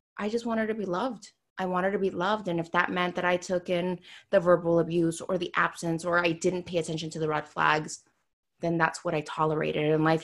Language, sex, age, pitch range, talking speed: English, female, 20-39, 170-205 Hz, 240 wpm